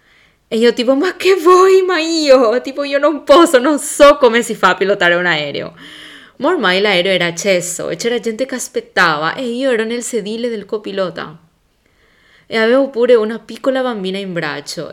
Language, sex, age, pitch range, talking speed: Italian, female, 20-39, 175-245 Hz, 185 wpm